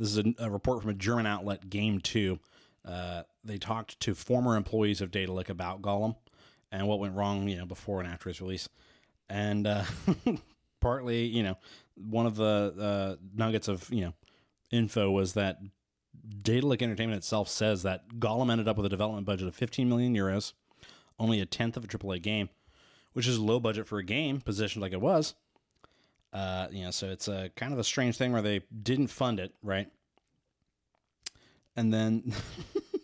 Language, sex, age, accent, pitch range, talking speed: English, male, 30-49, American, 95-115 Hz, 185 wpm